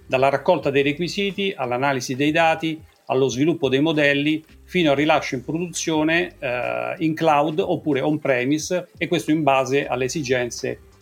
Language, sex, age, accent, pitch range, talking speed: Italian, male, 40-59, native, 130-160 Hz, 145 wpm